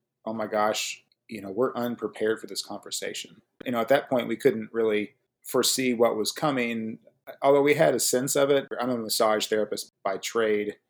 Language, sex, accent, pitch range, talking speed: English, male, American, 100-115 Hz, 195 wpm